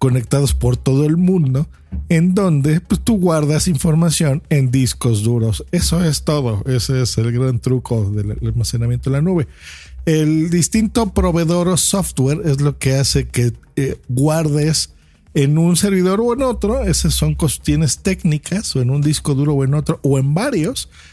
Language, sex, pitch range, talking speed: Spanish, male, 125-170 Hz, 170 wpm